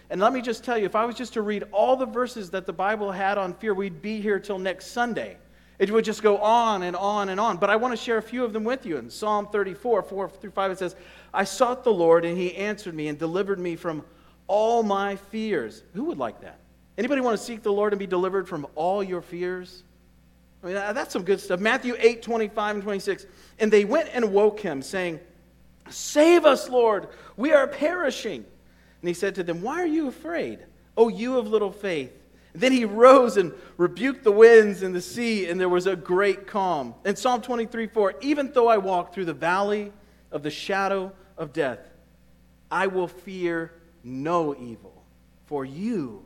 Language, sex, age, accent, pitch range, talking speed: English, male, 40-59, American, 180-230 Hz, 215 wpm